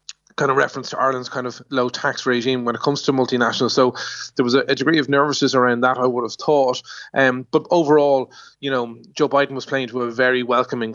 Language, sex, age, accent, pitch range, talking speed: English, male, 20-39, Irish, 120-130 Hz, 225 wpm